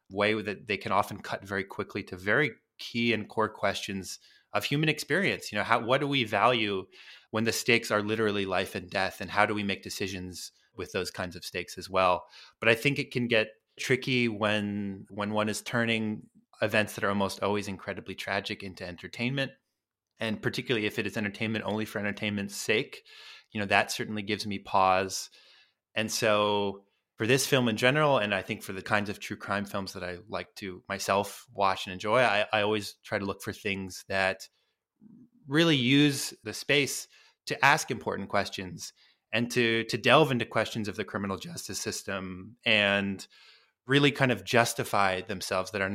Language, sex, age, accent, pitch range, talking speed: English, male, 20-39, American, 100-120 Hz, 190 wpm